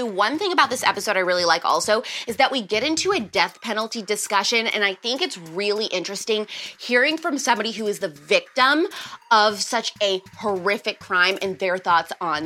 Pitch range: 195-290 Hz